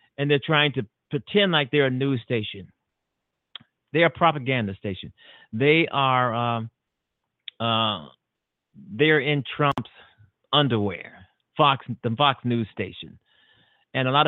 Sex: male